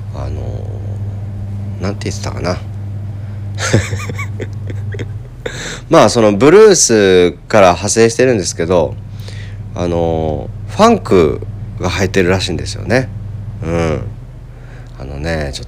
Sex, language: male, Japanese